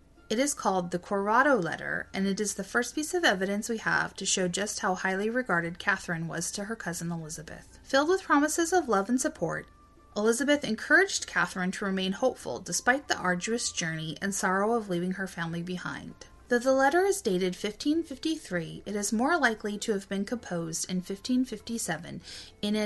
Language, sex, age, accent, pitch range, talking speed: English, female, 30-49, American, 180-245 Hz, 180 wpm